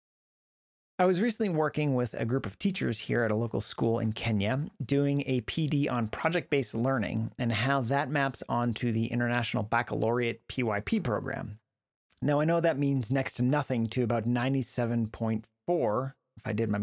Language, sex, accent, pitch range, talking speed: English, male, American, 115-145 Hz, 170 wpm